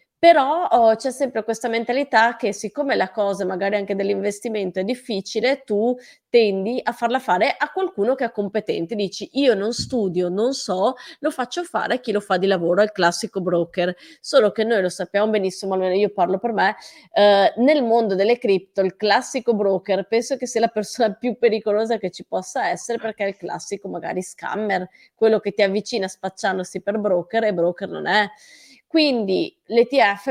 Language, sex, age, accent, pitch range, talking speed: Italian, female, 30-49, native, 190-235 Hz, 180 wpm